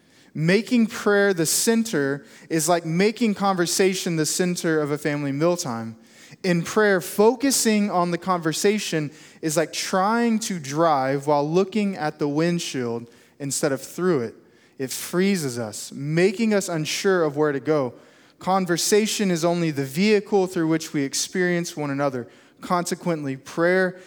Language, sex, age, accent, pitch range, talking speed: English, male, 20-39, American, 155-205 Hz, 140 wpm